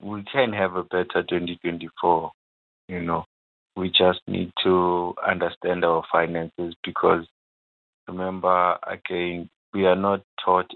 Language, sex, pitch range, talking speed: English, male, 80-90 Hz, 125 wpm